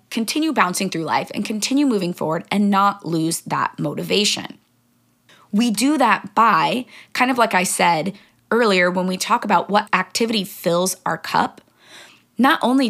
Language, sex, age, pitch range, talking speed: English, female, 20-39, 180-225 Hz, 160 wpm